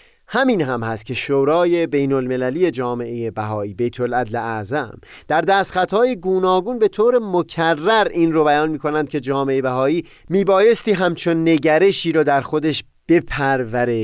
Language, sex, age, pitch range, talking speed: Persian, male, 30-49, 120-180 Hz, 145 wpm